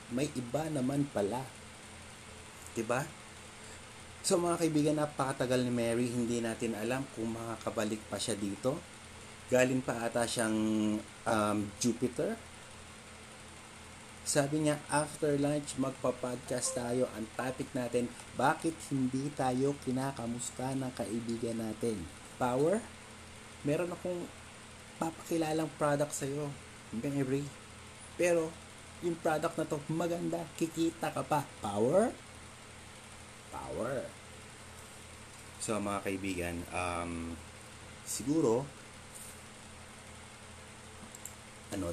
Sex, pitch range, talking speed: male, 110-130 Hz, 95 wpm